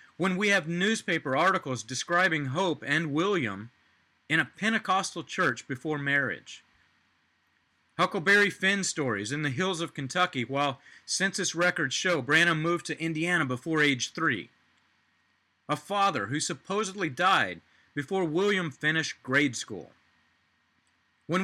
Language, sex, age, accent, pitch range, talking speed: English, male, 40-59, American, 130-175 Hz, 125 wpm